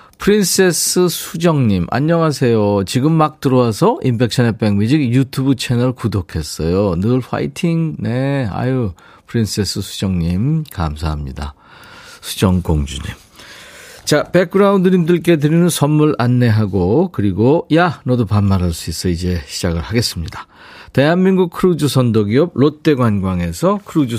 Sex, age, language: male, 40-59, Korean